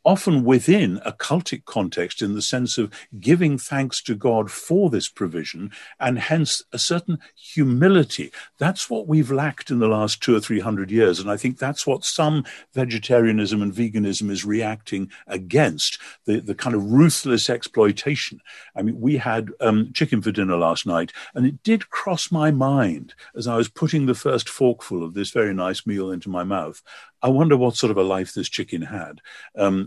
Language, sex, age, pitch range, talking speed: English, male, 60-79, 100-135 Hz, 185 wpm